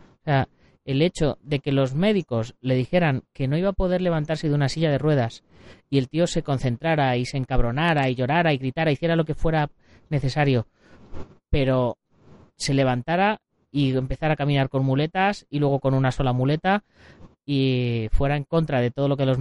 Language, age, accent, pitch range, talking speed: Spanish, 30-49, Spanish, 125-160 Hz, 195 wpm